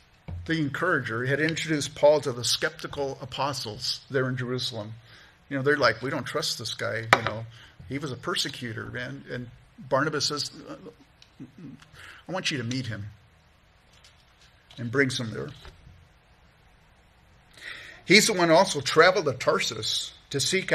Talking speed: 150 wpm